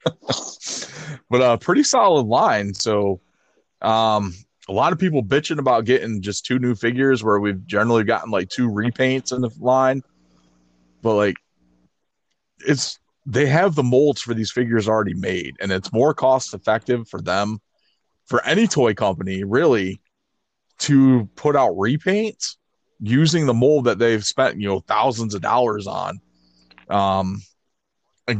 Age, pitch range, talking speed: 30-49, 95-125 Hz, 150 wpm